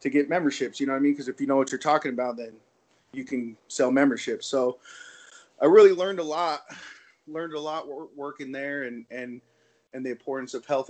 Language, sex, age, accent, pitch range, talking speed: English, male, 30-49, American, 115-140 Hz, 215 wpm